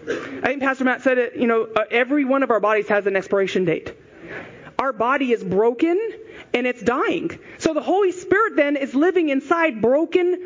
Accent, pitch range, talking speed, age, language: American, 225-320 Hz, 190 wpm, 30-49, English